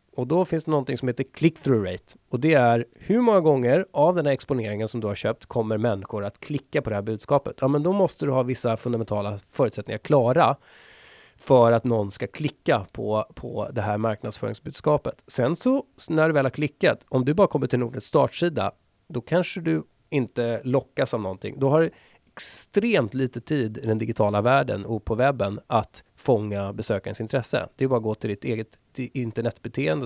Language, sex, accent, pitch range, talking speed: Swedish, male, native, 110-150 Hz, 195 wpm